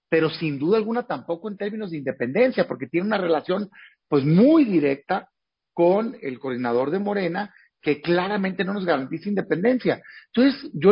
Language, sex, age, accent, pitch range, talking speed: Spanish, male, 40-59, Mexican, 160-210 Hz, 160 wpm